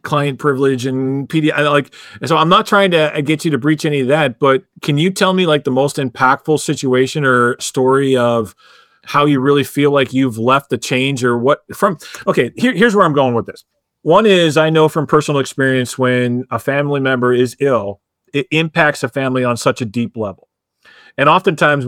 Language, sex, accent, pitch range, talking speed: English, male, American, 130-160 Hz, 210 wpm